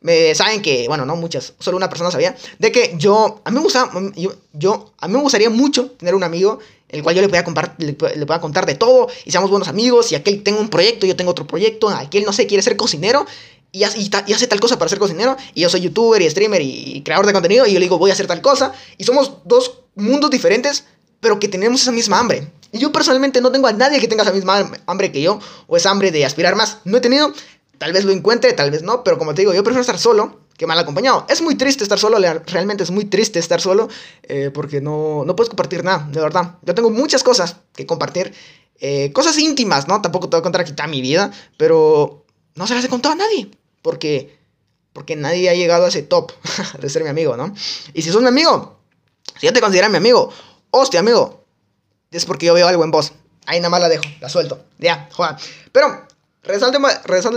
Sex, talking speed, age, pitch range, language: male, 240 wpm, 20-39, 175-275 Hz, Spanish